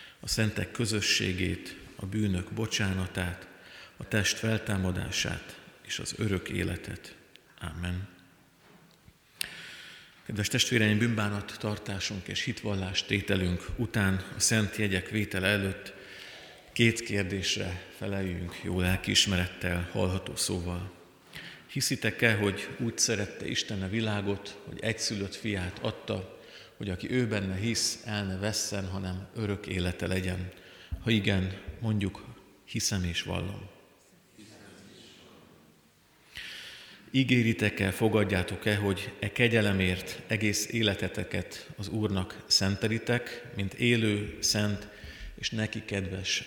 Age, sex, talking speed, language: 50-69, male, 100 wpm, Hungarian